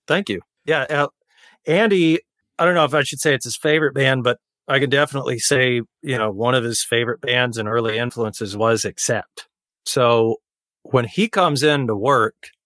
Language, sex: English, male